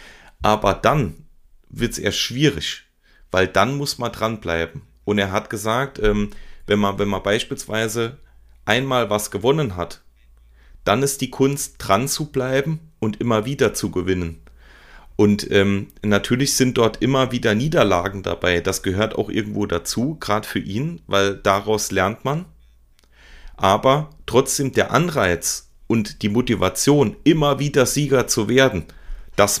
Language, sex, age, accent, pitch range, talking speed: German, male, 30-49, German, 100-120 Hz, 140 wpm